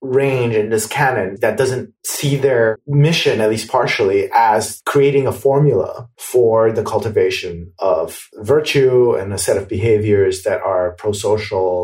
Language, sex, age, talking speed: English, male, 30-49, 145 wpm